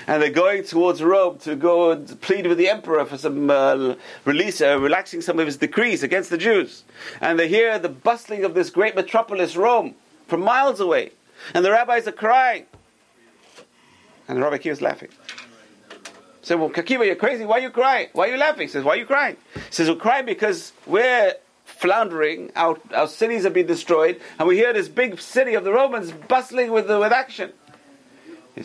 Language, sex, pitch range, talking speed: English, male, 150-250 Hz, 200 wpm